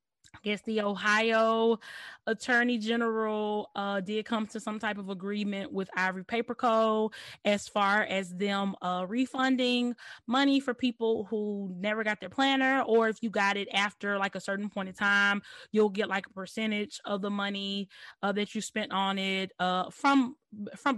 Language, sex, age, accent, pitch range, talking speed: English, female, 20-39, American, 195-225 Hz, 175 wpm